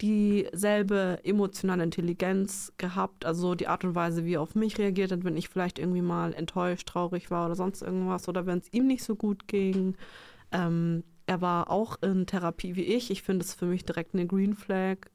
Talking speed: 200 wpm